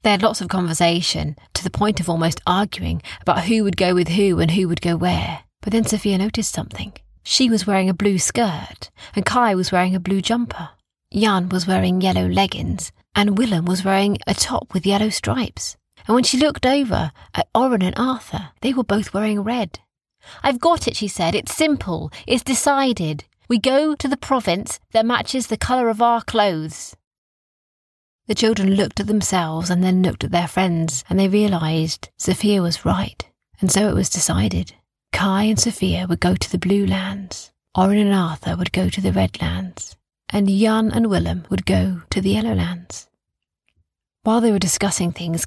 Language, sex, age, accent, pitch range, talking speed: English, female, 30-49, British, 165-215 Hz, 190 wpm